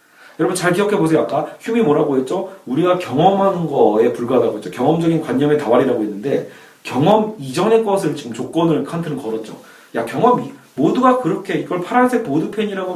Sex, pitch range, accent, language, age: male, 150-215 Hz, native, Korean, 40-59